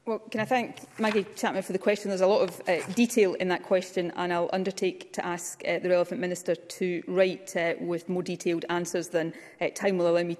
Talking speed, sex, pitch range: 230 wpm, female, 170-195 Hz